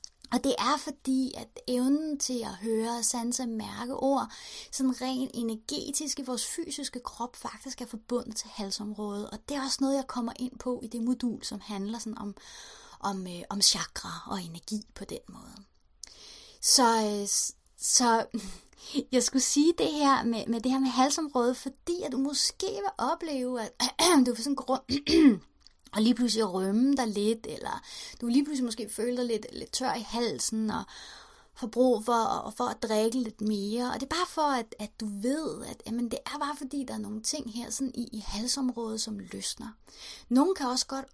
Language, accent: Danish, native